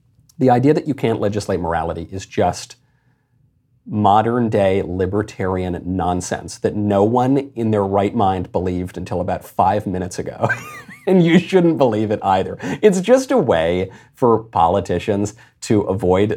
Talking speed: 145 wpm